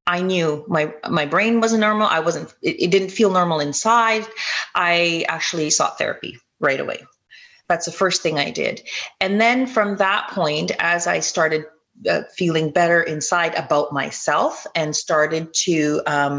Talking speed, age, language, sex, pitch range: 165 wpm, 30-49, English, female, 155-200 Hz